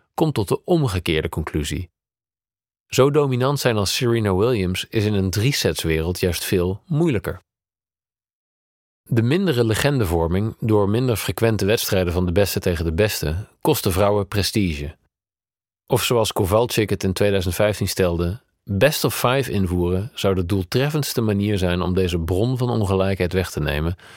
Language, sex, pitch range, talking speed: Dutch, male, 90-115 Hz, 150 wpm